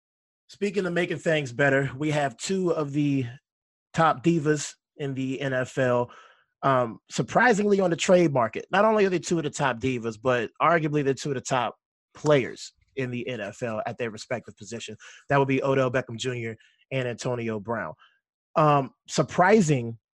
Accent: American